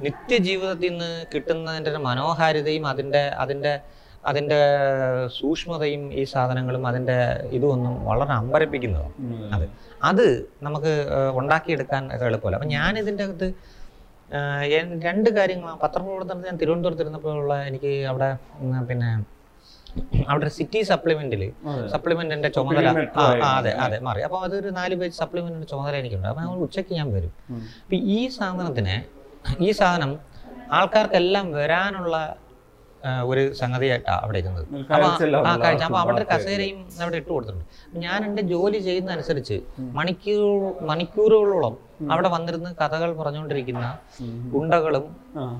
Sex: male